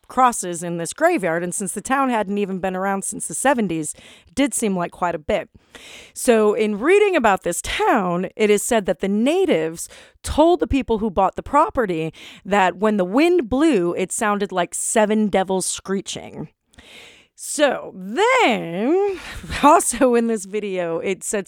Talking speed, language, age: 165 wpm, English, 30-49